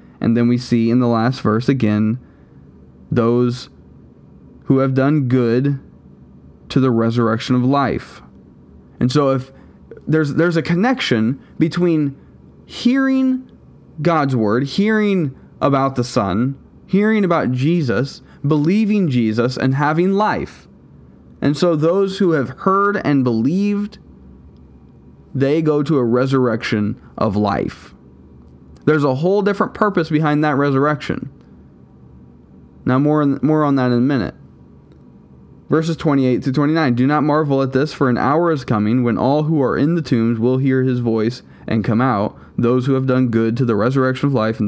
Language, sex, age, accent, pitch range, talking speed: English, male, 20-39, American, 110-150 Hz, 155 wpm